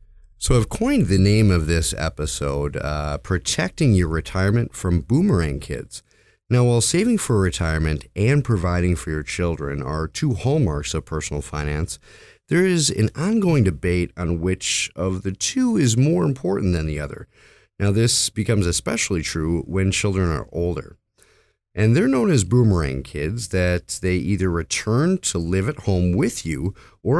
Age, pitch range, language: 30-49, 80-115 Hz, English